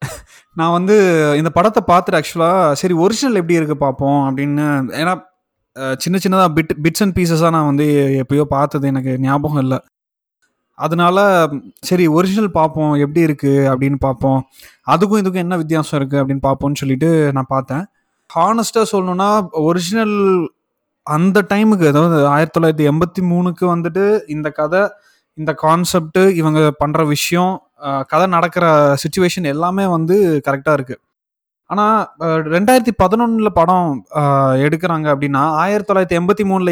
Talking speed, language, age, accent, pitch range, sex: 125 wpm, Tamil, 20-39, native, 145-185 Hz, male